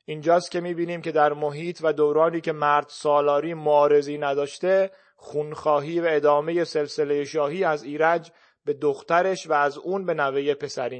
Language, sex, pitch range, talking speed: Persian, male, 145-170 Hz, 155 wpm